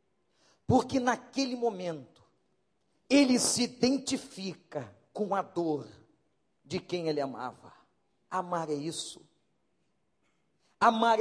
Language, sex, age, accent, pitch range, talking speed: Portuguese, male, 40-59, Brazilian, 210-265 Hz, 90 wpm